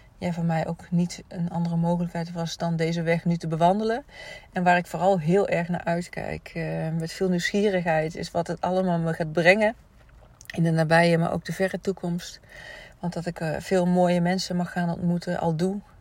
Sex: female